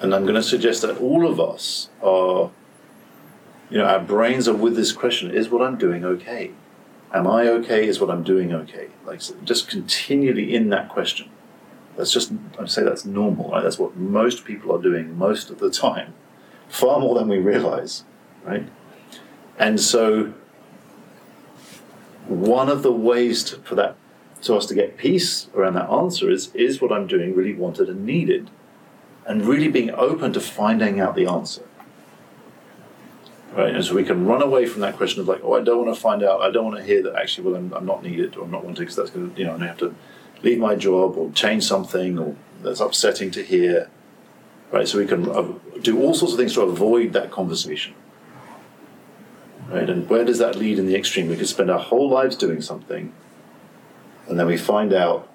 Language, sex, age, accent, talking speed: English, male, 50-69, British, 200 wpm